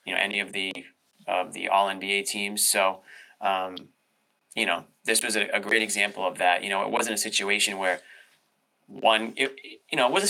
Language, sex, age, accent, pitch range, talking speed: English, male, 20-39, American, 95-110 Hz, 205 wpm